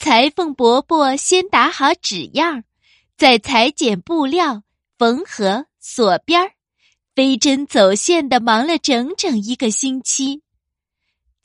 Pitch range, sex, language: 225-325 Hz, female, Chinese